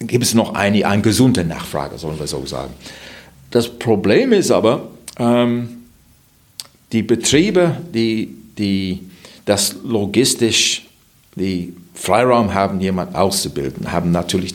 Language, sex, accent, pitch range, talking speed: German, male, German, 90-120 Hz, 120 wpm